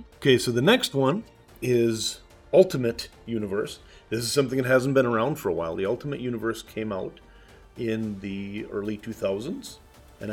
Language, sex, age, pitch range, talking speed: English, male, 40-59, 95-125 Hz, 165 wpm